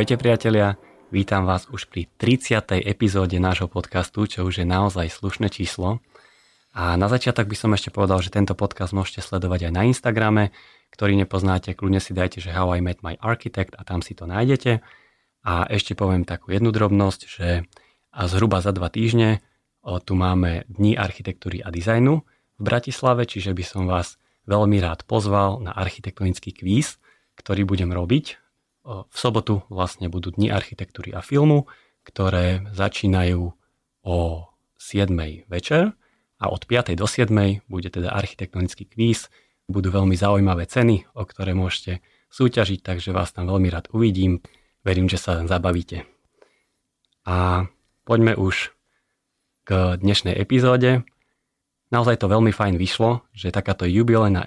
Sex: male